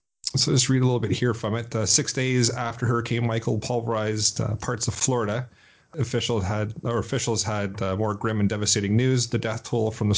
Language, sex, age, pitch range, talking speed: English, male, 30-49, 105-125 Hz, 210 wpm